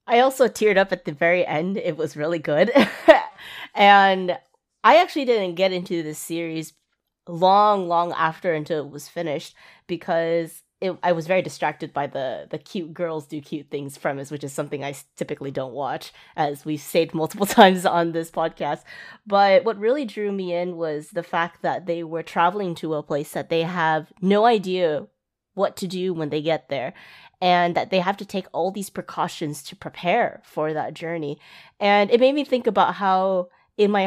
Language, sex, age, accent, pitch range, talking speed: English, female, 30-49, American, 155-190 Hz, 190 wpm